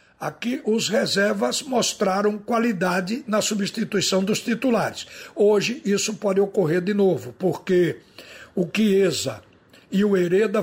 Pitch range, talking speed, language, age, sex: 180-215 Hz, 120 wpm, Portuguese, 60-79, male